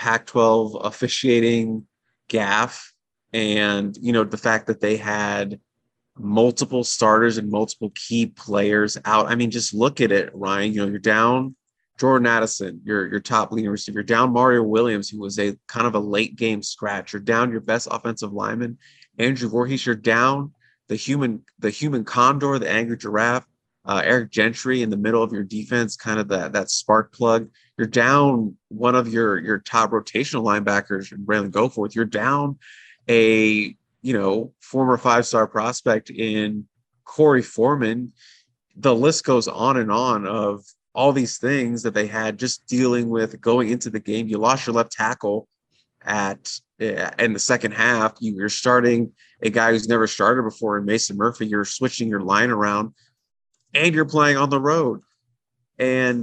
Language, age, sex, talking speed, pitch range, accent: English, 30-49, male, 170 wpm, 105-125 Hz, American